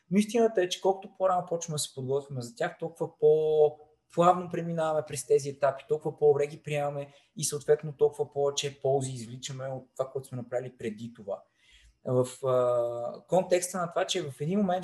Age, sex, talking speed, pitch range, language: 20-39, male, 175 wpm, 135-170 Hz, Bulgarian